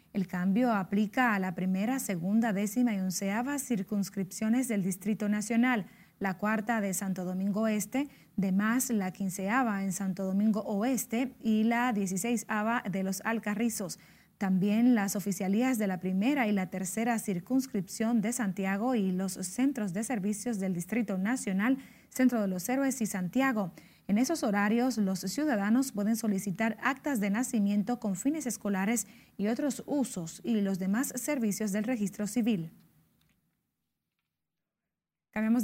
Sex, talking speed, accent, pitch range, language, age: female, 140 wpm, American, 195-240 Hz, Spanish, 30-49